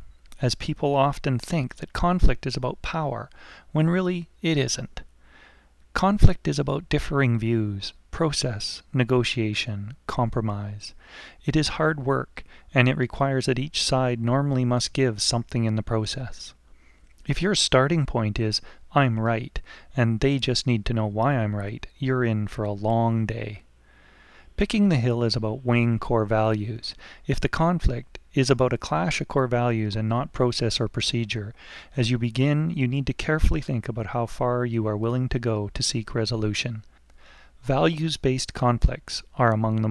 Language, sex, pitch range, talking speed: English, male, 110-135 Hz, 160 wpm